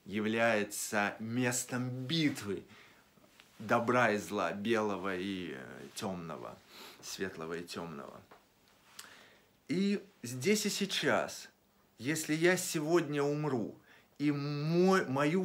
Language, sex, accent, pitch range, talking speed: Russian, male, native, 125-180 Hz, 85 wpm